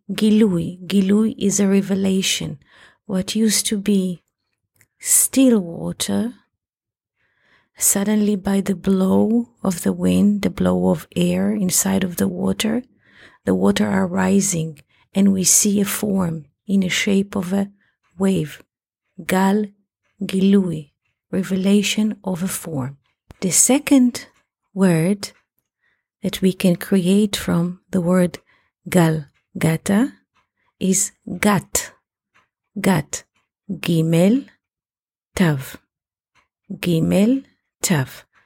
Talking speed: 105 wpm